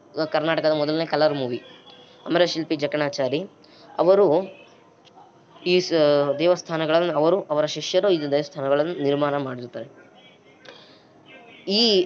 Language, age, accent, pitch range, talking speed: Kannada, 20-39, native, 145-180 Hz, 85 wpm